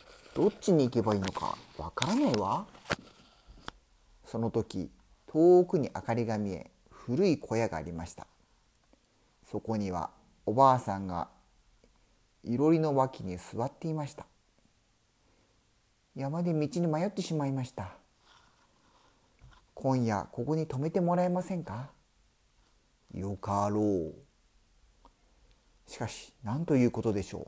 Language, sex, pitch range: Spanish, male, 95-140 Hz